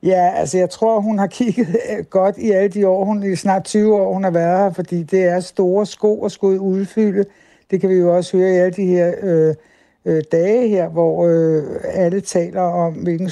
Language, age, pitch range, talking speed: Danish, 60-79, 170-195 Hz, 220 wpm